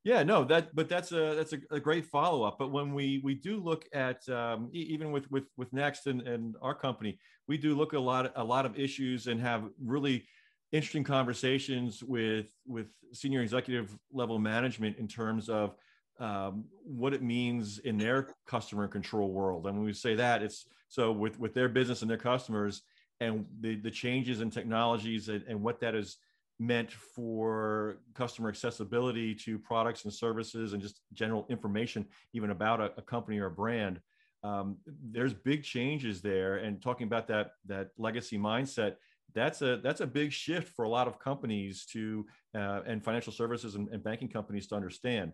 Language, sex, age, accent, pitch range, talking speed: English, male, 40-59, American, 110-130 Hz, 185 wpm